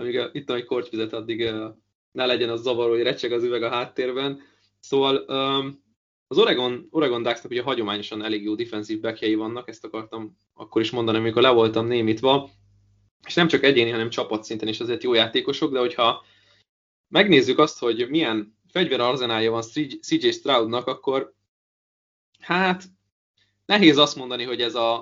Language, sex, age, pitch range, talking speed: Hungarian, male, 20-39, 110-135 Hz, 165 wpm